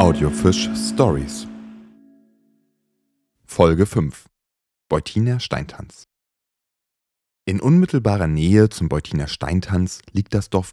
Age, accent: 30-49, German